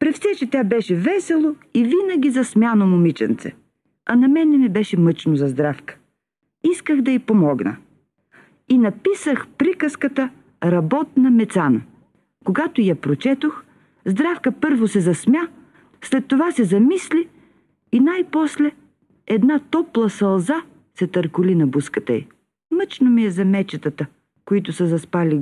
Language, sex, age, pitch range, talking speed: Bulgarian, female, 50-69, 175-290 Hz, 130 wpm